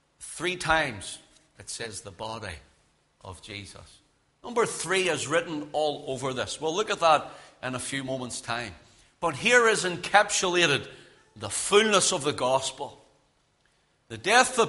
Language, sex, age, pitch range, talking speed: English, male, 60-79, 135-185 Hz, 145 wpm